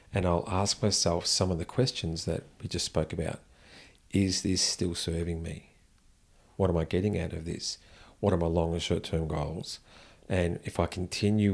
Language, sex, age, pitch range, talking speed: English, male, 40-59, 85-95 Hz, 185 wpm